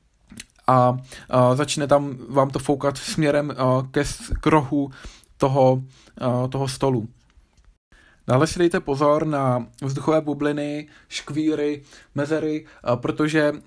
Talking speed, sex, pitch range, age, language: 95 wpm, male, 130-155 Hz, 20-39, Czech